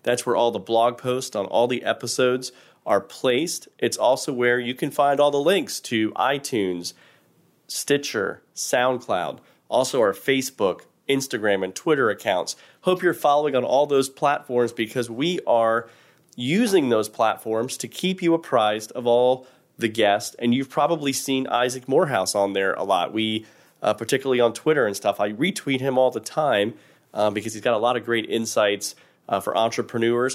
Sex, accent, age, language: male, American, 30-49, English